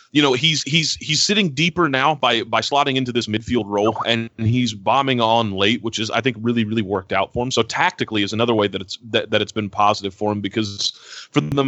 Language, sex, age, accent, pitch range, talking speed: English, male, 30-49, American, 105-130 Hz, 240 wpm